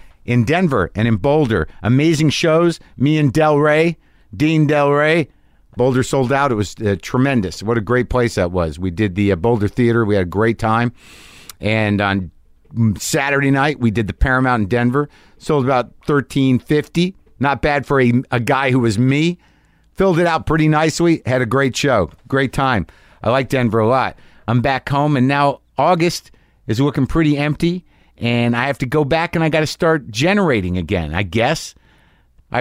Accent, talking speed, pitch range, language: American, 190 wpm, 110-145 Hz, English